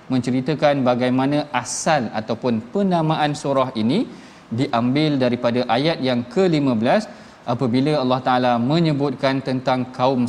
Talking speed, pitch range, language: 105 wpm, 130-170 Hz, Malayalam